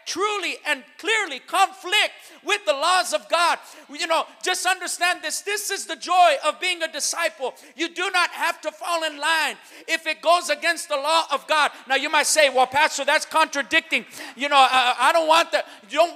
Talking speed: 200 wpm